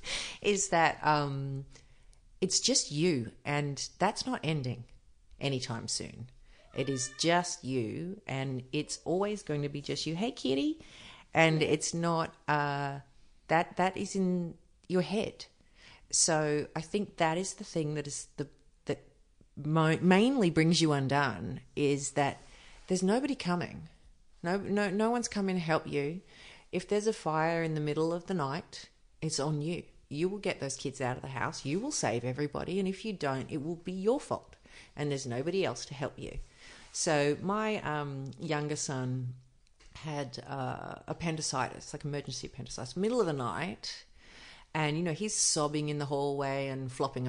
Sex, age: female, 40-59